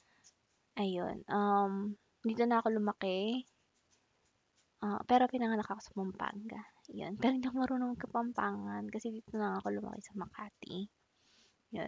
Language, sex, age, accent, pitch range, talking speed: Filipino, female, 20-39, native, 190-230 Hz, 130 wpm